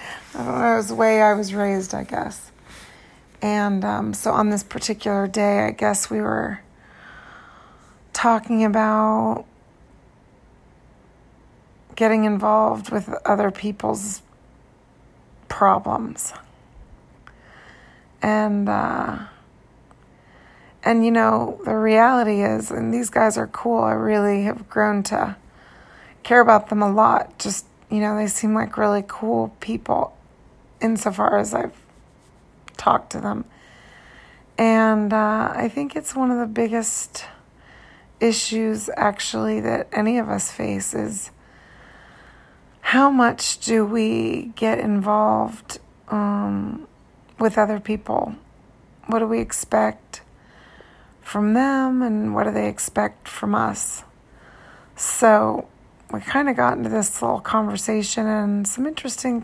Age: 30-49